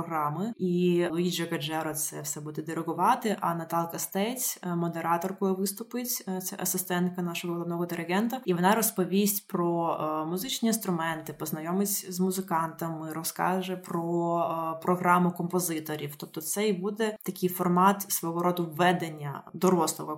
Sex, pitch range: female, 165-185 Hz